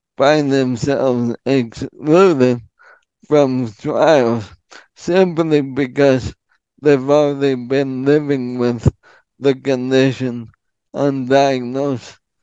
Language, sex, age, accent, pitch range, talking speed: English, male, 20-39, American, 125-145 Hz, 70 wpm